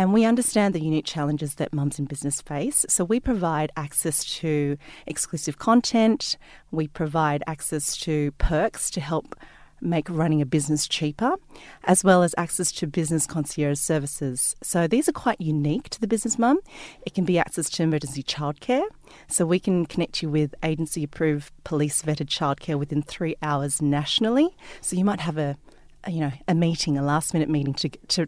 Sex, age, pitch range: female, 30-49, 150-180 Hz